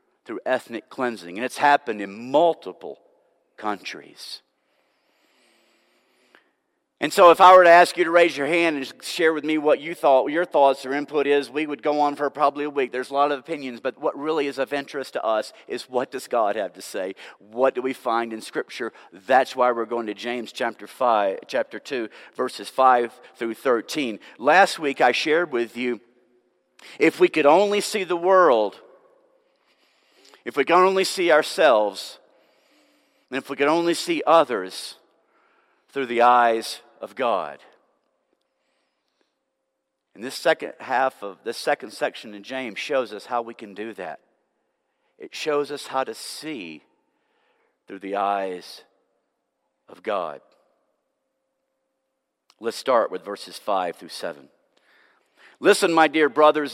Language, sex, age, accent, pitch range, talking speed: English, male, 50-69, American, 125-180 Hz, 160 wpm